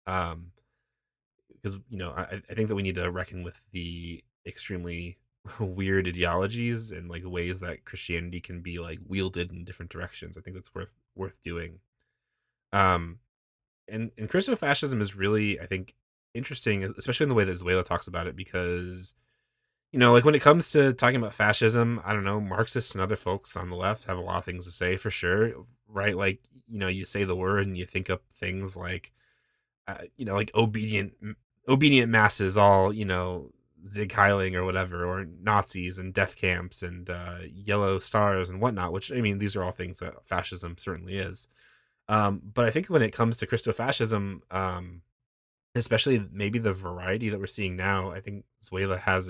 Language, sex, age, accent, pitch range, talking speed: English, male, 20-39, American, 90-110 Hz, 190 wpm